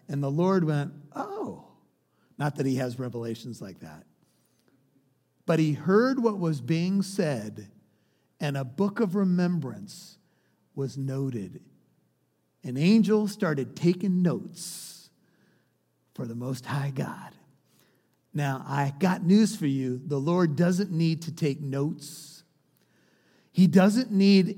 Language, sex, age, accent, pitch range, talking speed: English, male, 50-69, American, 160-220 Hz, 125 wpm